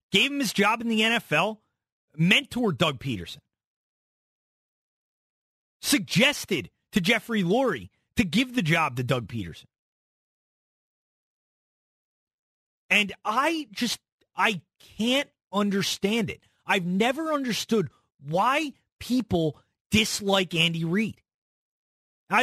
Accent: American